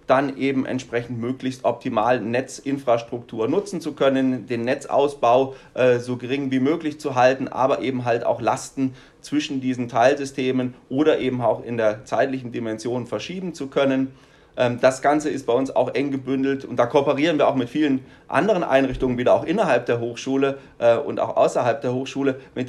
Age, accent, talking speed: 30-49, German, 165 wpm